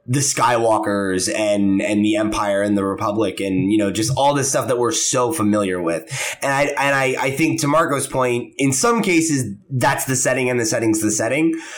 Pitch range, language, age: 110-155 Hz, English, 20-39